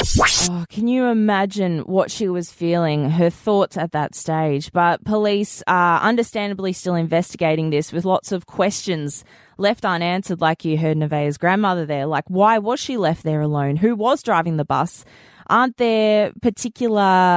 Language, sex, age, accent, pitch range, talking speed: English, female, 20-39, Australian, 160-195 Hz, 160 wpm